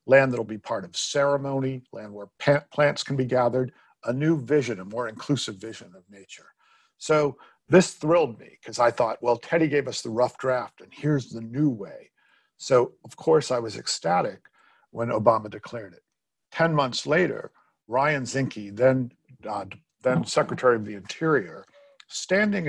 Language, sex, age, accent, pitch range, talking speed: English, male, 50-69, American, 115-140 Hz, 165 wpm